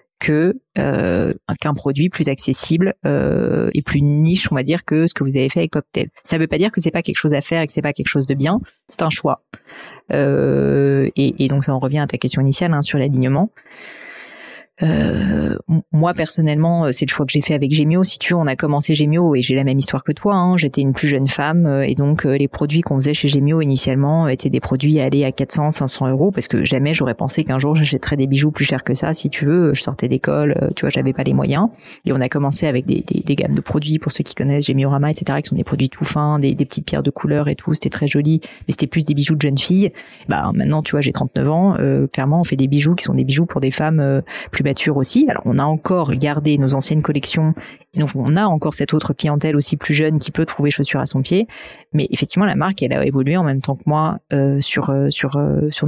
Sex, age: female, 30-49